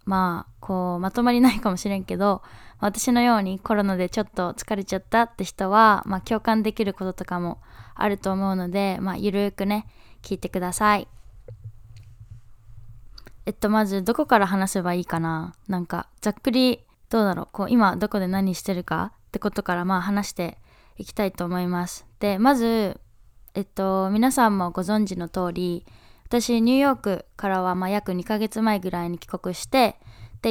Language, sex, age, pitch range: Japanese, female, 20-39, 180-225 Hz